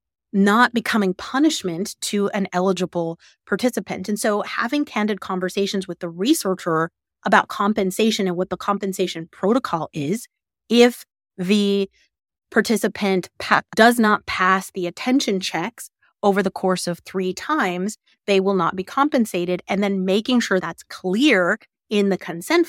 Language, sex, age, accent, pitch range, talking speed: English, female, 30-49, American, 185-220 Hz, 140 wpm